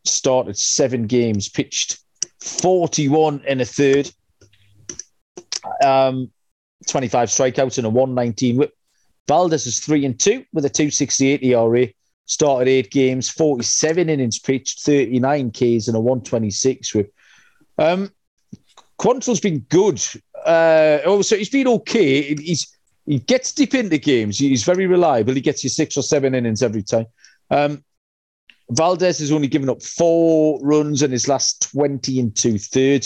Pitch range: 125-165 Hz